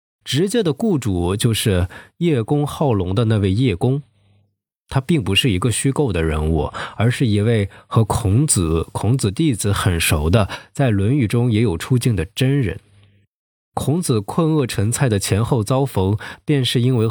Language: Chinese